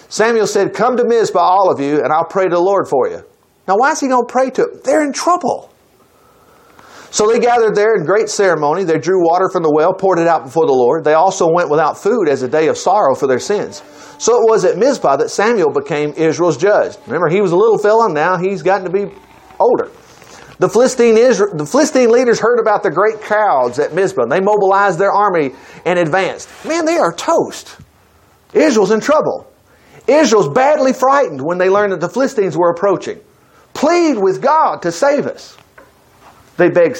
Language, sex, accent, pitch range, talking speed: English, male, American, 180-280 Hz, 205 wpm